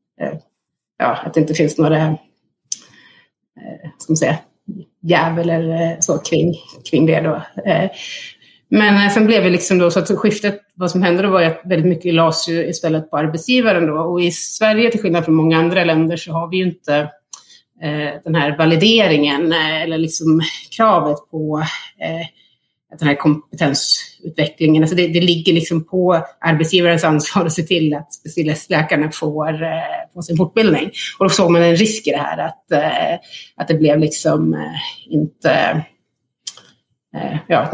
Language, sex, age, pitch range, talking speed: Swedish, female, 30-49, 160-185 Hz, 165 wpm